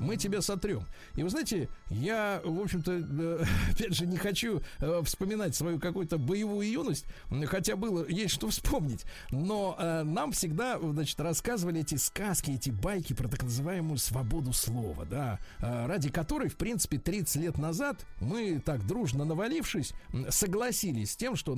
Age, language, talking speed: 50-69, Russian, 145 wpm